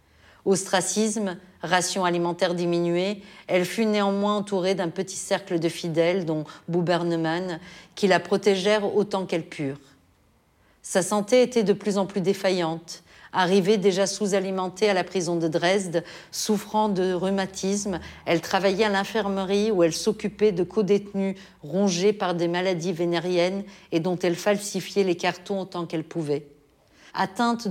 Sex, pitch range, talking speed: female, 170-195 Hz, 140 wpm